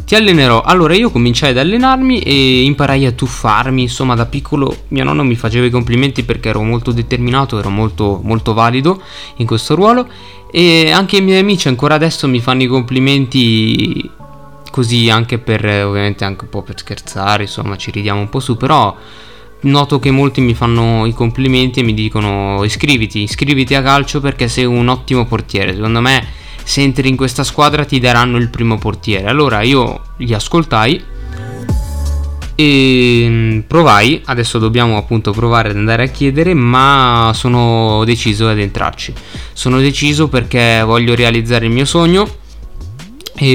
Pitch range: 110-135 Hz